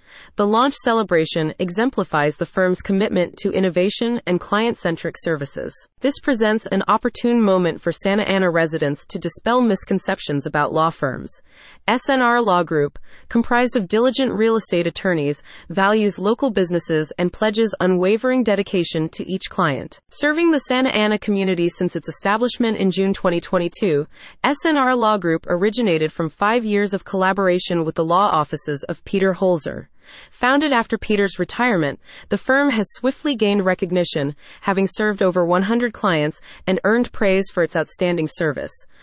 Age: 30-49